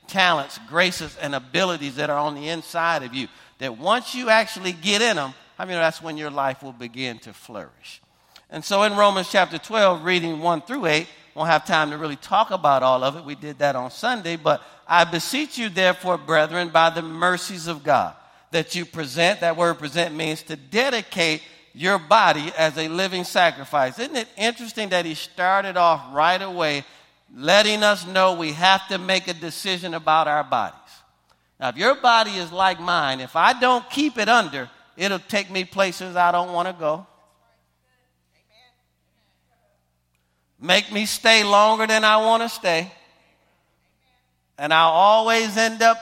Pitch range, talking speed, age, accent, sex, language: 150-200 Hz, 175 wpm, 50-69, American, male, English